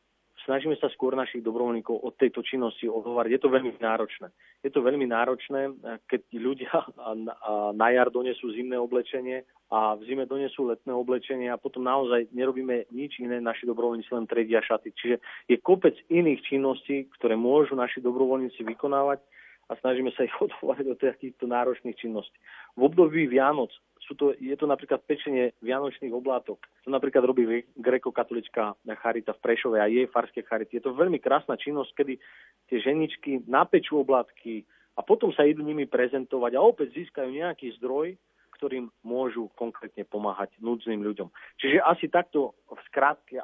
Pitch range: 115-135 Hz